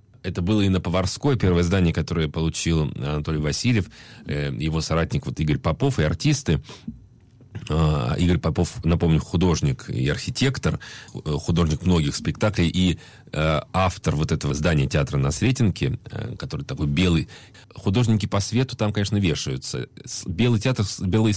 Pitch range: 85-110 Hz